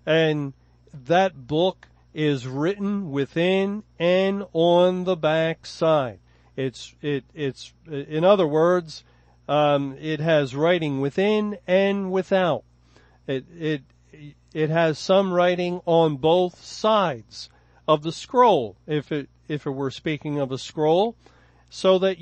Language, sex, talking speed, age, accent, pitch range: English, male, 125 wpm, 50-69, American, 140-175 Hz